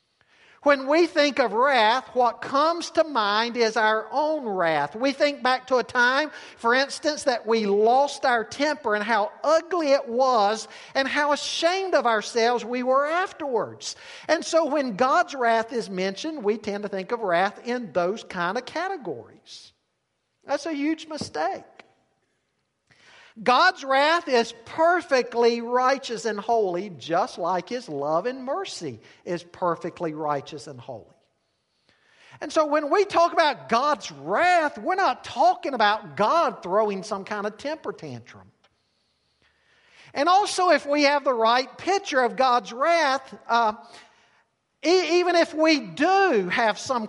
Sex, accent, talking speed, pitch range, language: male, American, 150 wpm, 210-300 Hz, English